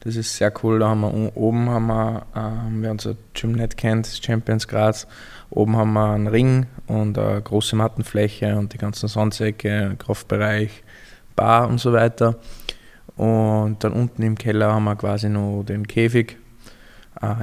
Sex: male